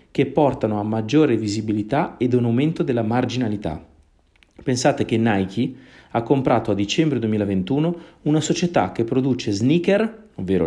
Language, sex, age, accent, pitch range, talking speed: Italian, male, 40-59, native, 110-145 Hz, 135 wpm